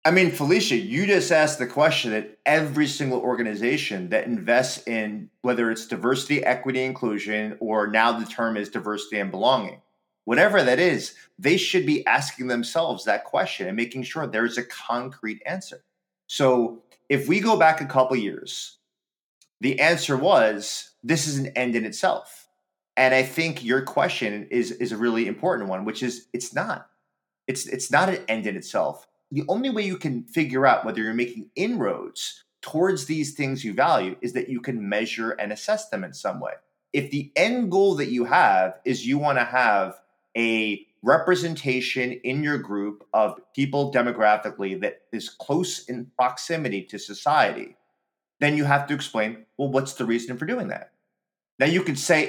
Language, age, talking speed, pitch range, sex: English, 30-49, 180 wpm, 115-150 Hz, male